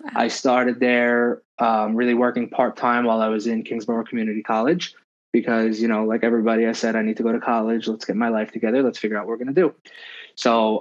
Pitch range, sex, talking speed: 110-130 Hz, male, 235 wpm